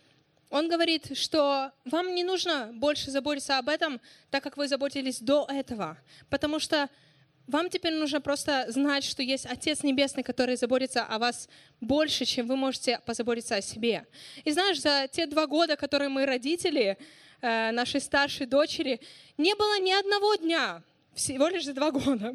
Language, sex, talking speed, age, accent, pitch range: Russian, female, 160 wpm, 20-39, native, 260-330 Hz